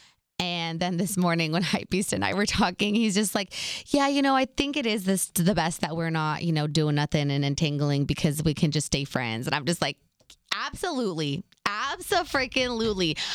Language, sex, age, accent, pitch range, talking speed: English, female, 20-39, American, 175-245 Hz, 200 wpm